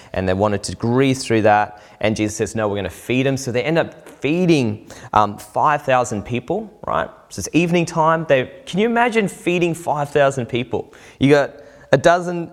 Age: 20-39